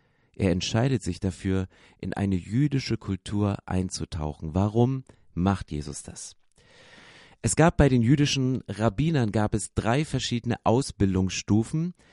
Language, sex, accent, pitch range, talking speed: English, male, German, 95-125 Hz, 120 wpm